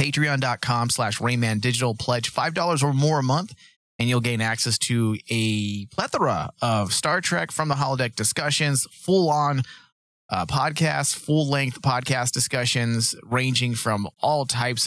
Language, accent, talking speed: English, American, 135 wpm